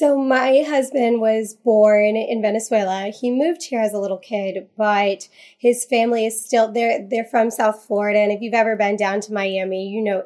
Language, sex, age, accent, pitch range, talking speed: English, female, 20-39, American, 205-245 Hz, 200 wpm